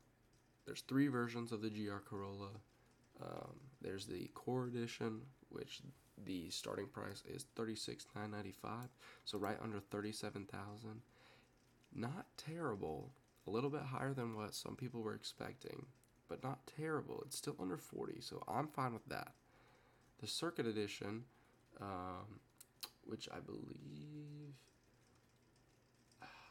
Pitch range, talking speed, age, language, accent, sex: 100-125 Hz, 125 wpm, 20-39, English, American, male